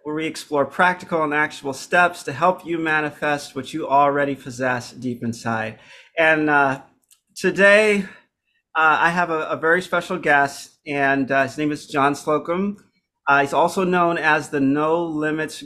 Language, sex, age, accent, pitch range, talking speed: English, male, 40-59, American, 140-175 Hz, 165 wpm